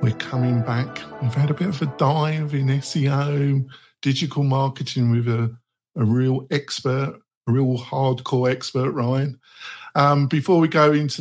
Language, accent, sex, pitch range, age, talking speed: English, British, male, 120-150 Hz, 50-69, 155 wpm